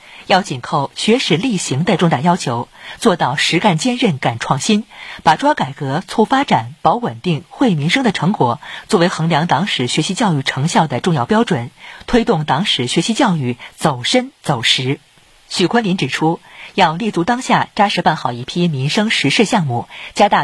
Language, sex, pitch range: Chinese, female, 145-215 Hz